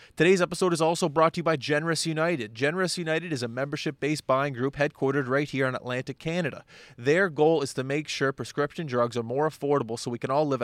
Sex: male